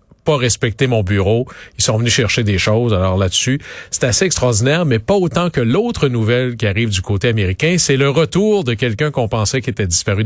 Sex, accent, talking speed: male, Canadian, 210 wpm